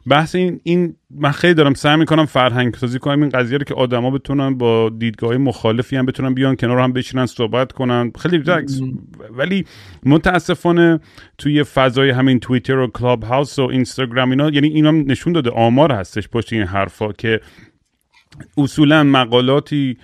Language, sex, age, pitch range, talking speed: Persian, male, 40-59, 125-150 Hz, 160 wpm